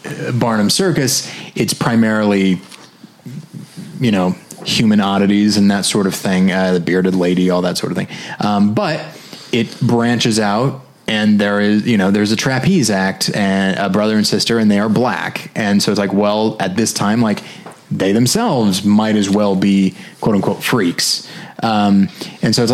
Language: English